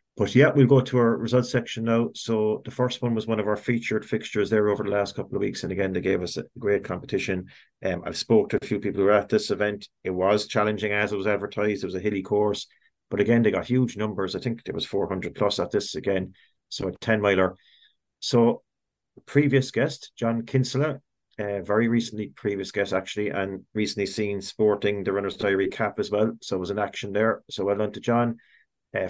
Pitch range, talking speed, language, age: 100-115 Hz, 225 wpm, English, 40-59